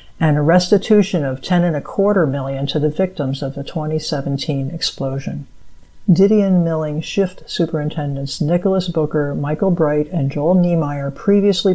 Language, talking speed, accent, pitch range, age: English, 145 wpm, American, 150-175 Hz, 60-79